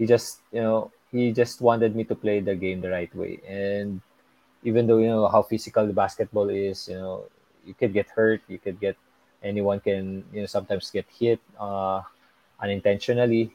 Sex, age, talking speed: male, 20-39, 190 wpm